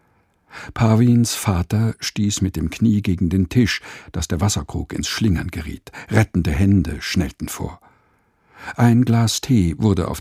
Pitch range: 85-110 Hz